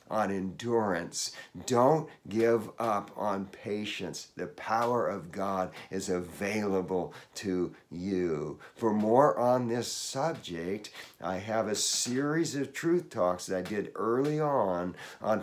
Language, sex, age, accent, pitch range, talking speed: English, male, 50-69, American, 95-125 Hz, 130 wpm